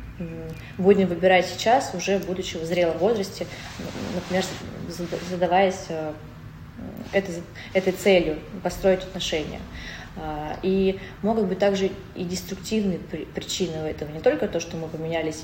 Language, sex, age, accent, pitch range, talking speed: Russian, female, 20-39, native, 160-190 Hz, 110 wpm